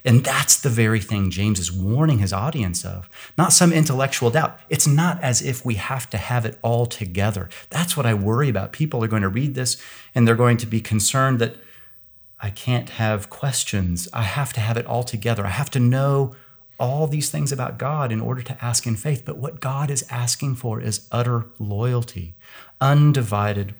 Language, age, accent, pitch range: English, 30-49, American, 105-135 Hz